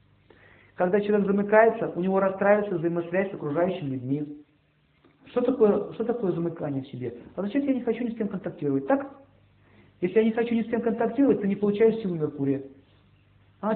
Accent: native